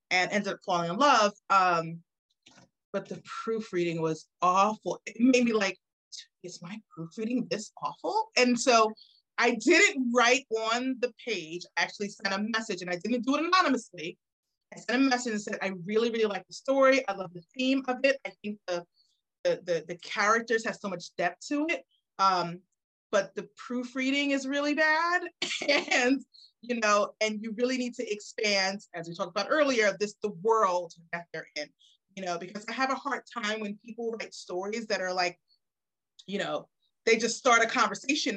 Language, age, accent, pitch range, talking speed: English, 30-49, American, 190-255 Hz, 190 wpm